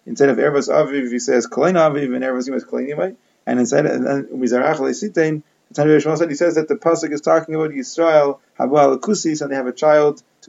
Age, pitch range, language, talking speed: 30-49, 130-155 Hz, English, 215 wpm